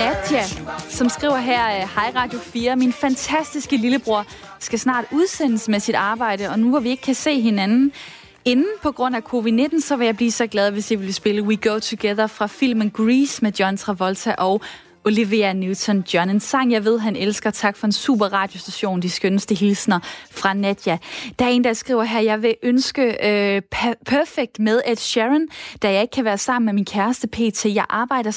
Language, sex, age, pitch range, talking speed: Danish, female, 20-39, 210-255 Hz, 200 wpm